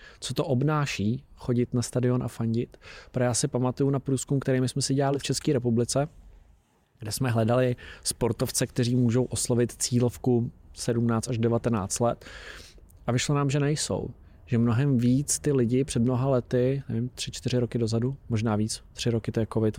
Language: Czech